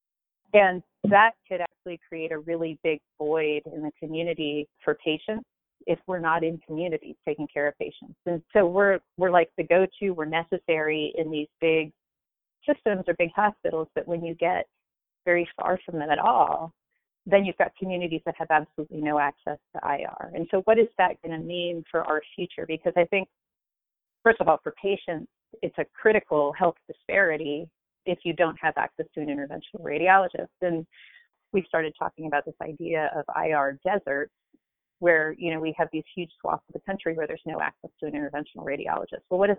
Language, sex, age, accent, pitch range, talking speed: English, female, 30-49, American, 155-185 Hz, 190 wpm